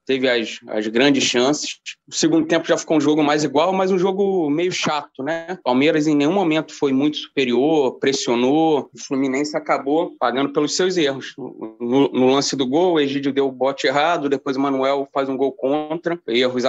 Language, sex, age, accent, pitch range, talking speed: Portuguese, male, 20-39, Brazilian, 135-185 Hz, 195 wpm